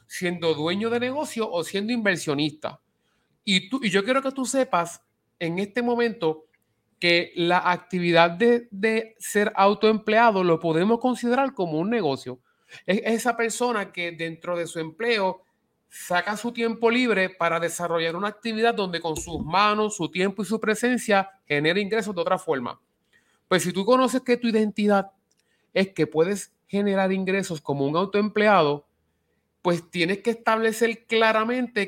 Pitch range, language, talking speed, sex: 165-220 Hz, Spanish, 150 wpm, male